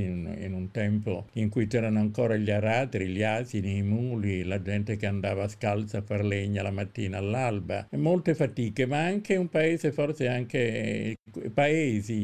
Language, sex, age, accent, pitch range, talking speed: Italian, male, 50-69, native, 105-125 Hz, 170 wpm